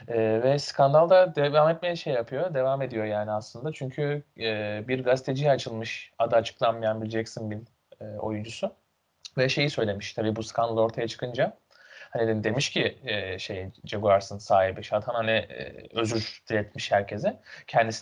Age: 30-49